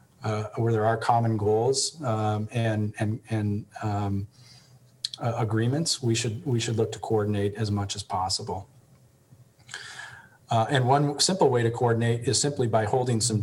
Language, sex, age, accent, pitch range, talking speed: English, male, 40-59, American, 105-115 Hz, 160 wpm